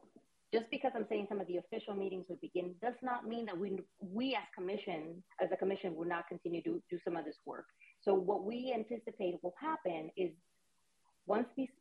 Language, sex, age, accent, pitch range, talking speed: English, female, 30-49, American, 180-230 Hz, 205 wpm